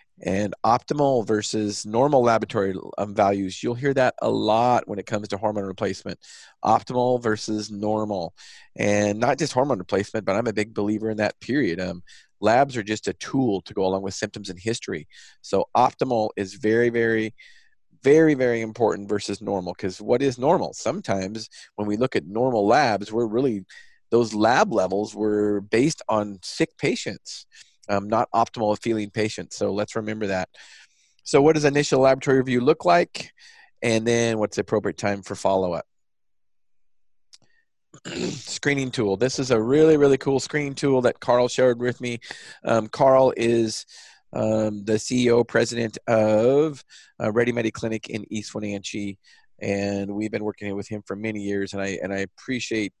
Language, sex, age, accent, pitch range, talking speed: English, male, 40-59, American, 100-125 Hz, 170 wpm